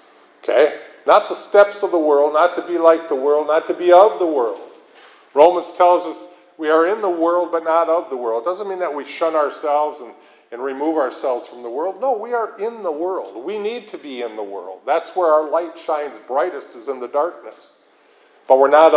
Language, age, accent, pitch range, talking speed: English, 50-69, American, 145-180 Hz, 230 wpm